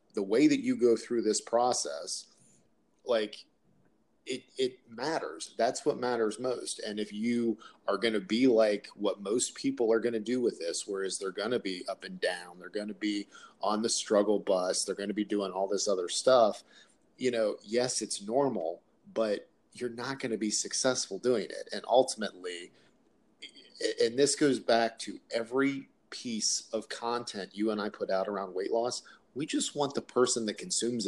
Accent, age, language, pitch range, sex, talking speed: American, 40-59, English, 105-135 Hz, male, 190 wpm